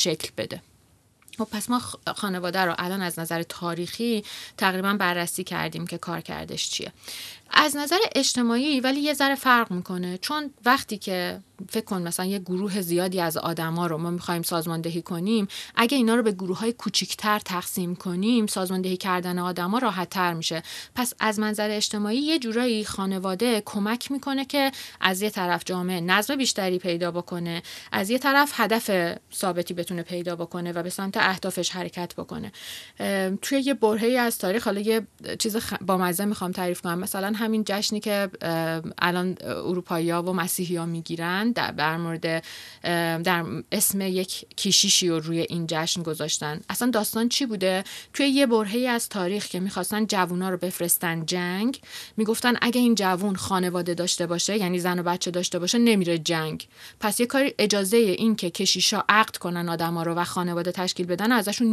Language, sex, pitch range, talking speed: Persian, female, 175-225 Hz, 165 wpm